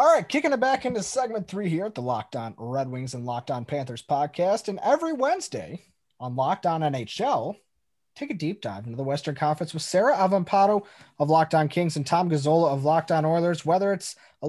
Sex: male